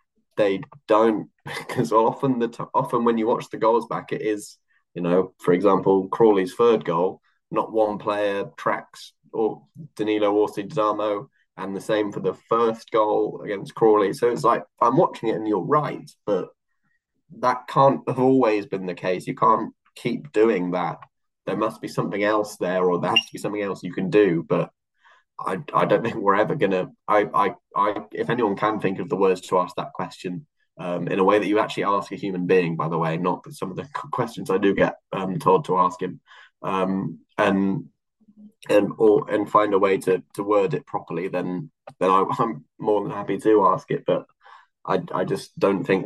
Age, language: 10-29, English